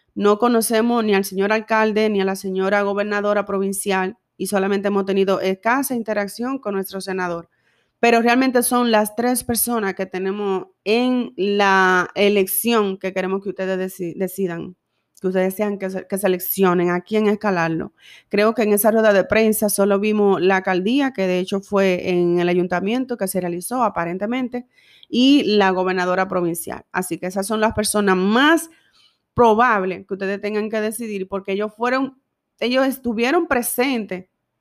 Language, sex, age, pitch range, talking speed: Spanish, female, 30-49, 190-235 Hz, 160 wpm